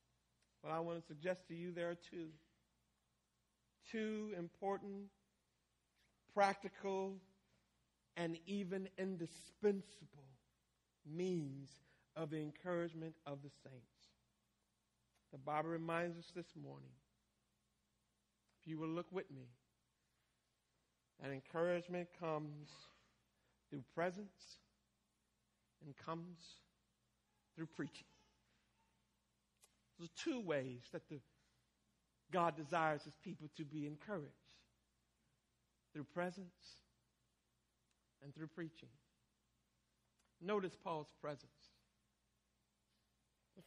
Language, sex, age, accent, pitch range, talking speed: English, male, 50-69, American, 150-190 Hz, 85 wpm